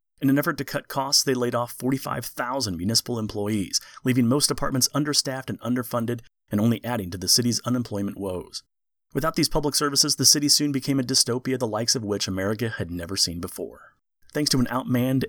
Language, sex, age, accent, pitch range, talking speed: English, male, 30-49, American, 100-130 Hz, 190 wpm